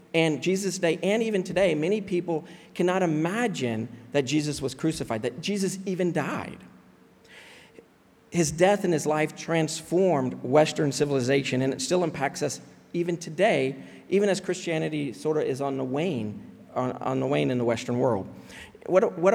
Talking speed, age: 160 wpm, 40-59